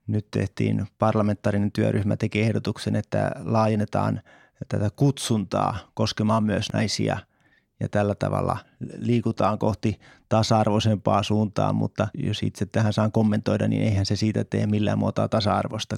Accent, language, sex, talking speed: native, Finnish, male, 130 wpm